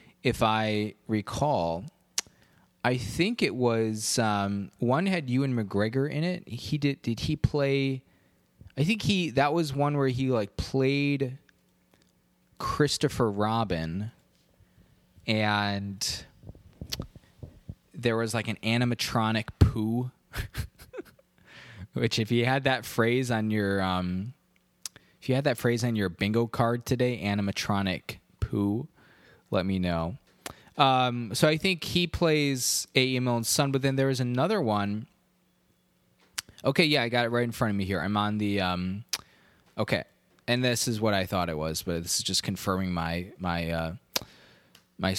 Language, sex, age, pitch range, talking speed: English, male, 20-39, 100-130 Hz, 145 wpm